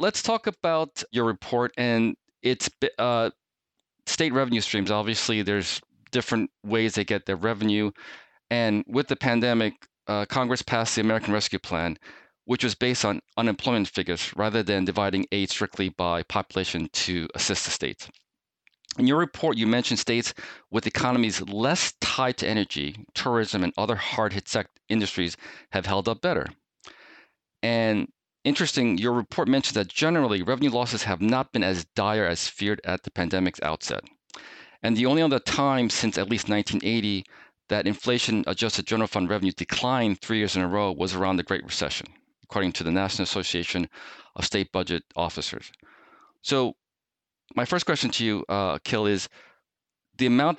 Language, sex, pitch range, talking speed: English, male, 95-120 Hz, 160 wpm